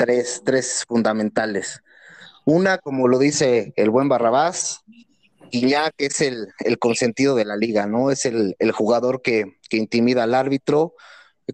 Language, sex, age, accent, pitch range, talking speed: Spanish, male, 30-49, Mexican, 120-145 Hz, 150 wpm